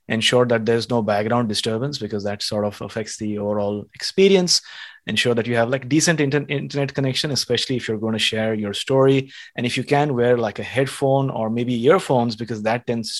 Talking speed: 205 wpm